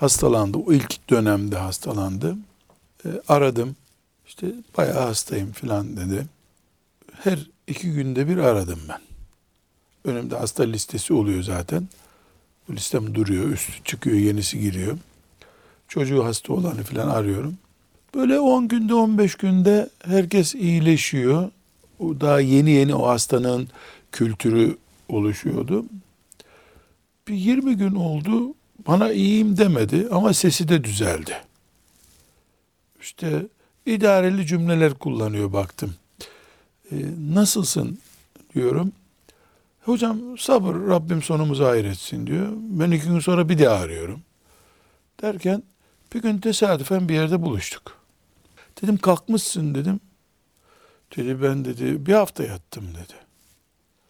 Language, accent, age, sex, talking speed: Turkish, native, 60-79, male, 110 wpm